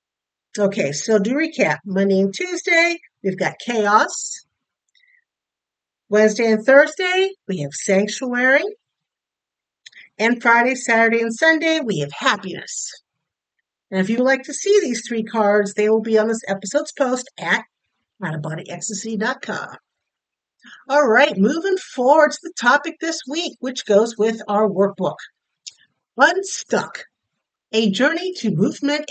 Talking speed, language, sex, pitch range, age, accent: 130 wpm, English, female, 200-295 Hz, 50-69, American